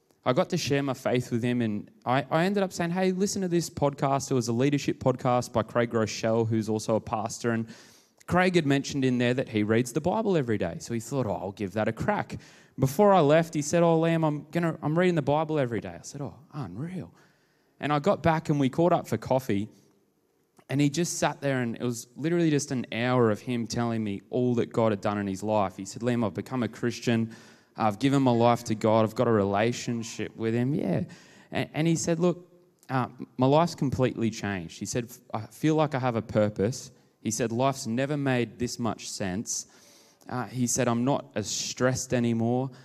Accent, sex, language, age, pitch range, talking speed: Australian, male, English, 20-39, 110-140 Hz, 225 wpm